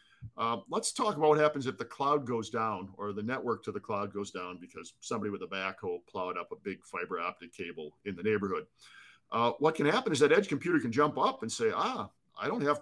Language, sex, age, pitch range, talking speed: English, male, 50-69, 115-145 Hz, 240 wpm